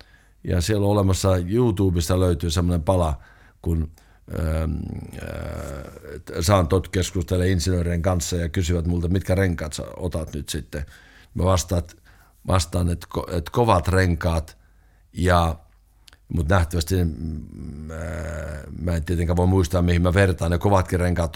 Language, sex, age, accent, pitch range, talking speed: Finnish, male, 60-79, native, 85-100 Hz, 130 wpm